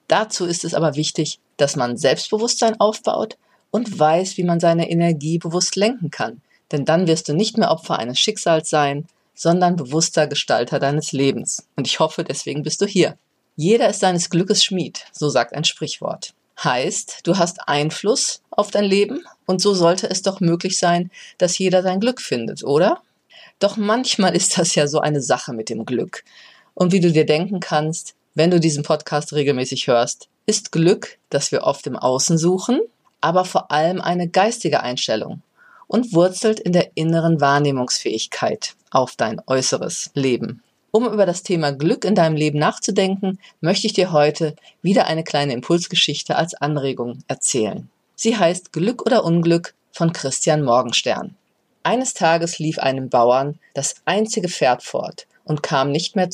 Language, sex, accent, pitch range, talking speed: German, female, German, 150-195 Hz, 165 wpm